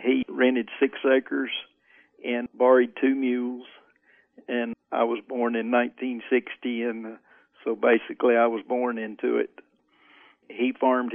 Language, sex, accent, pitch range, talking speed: English, male, American, 120-125 Hz, 130 wpm